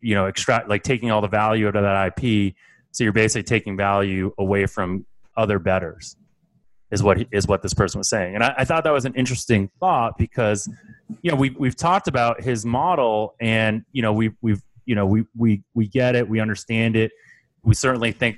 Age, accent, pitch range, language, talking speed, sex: 30-49, American, 100-120 Hz, English, 215 wpm, male